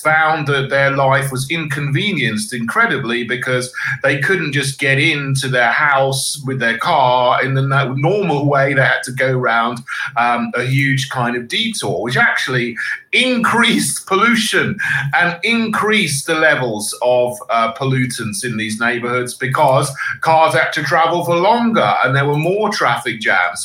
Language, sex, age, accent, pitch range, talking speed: English, male, 40-59, British, 115-145 Hz, 150 wpm